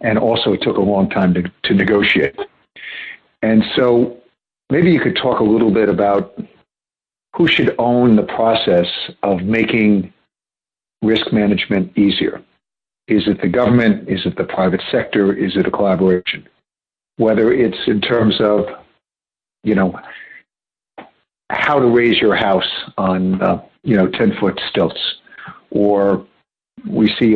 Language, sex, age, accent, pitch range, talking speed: English, male, 60-79, American, 95-115 Hz, 145 wpm